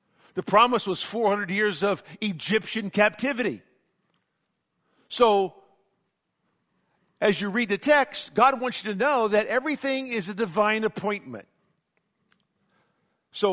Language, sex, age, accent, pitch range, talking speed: English, male, 50-69, American, 160-215 Hz, 115 wpm